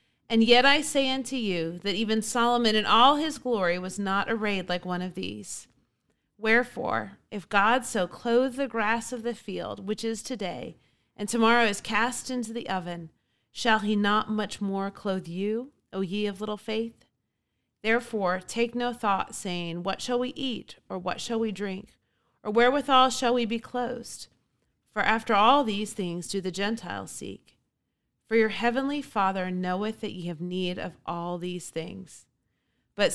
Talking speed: 170 wpm